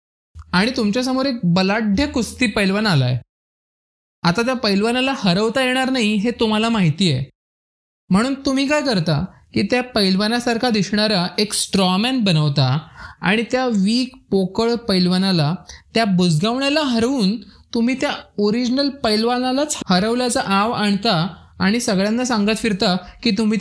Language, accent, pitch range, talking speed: Marathi, native, 185-240 Hz, 125 wpm